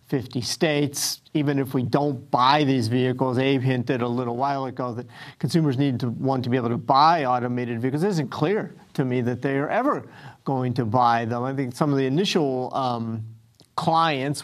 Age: 50-69